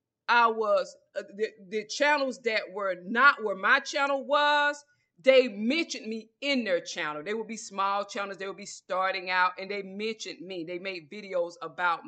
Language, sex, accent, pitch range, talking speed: English, female, American, 180-235 Hz, 185 wpm